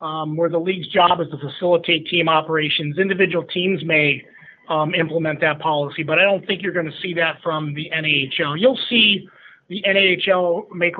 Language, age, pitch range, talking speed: English, 30-49, 155-180 Hz, 185 wpm